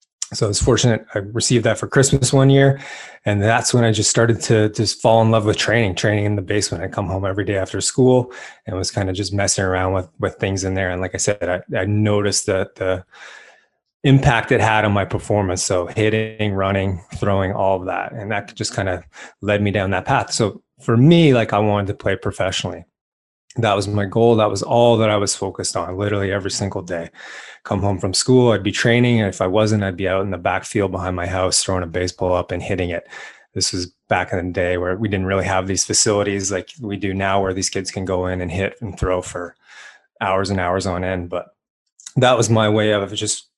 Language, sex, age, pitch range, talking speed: English, male, 20-39, 95-110 Hz, 235 wpm